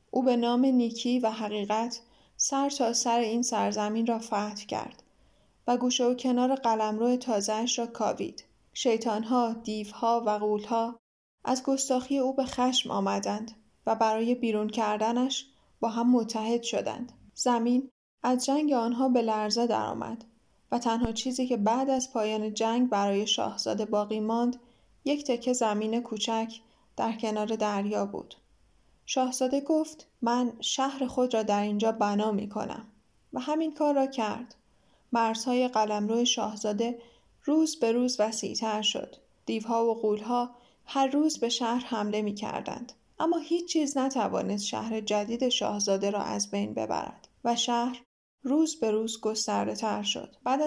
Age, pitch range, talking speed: 10-29, 220-255 Hz, 140 wpm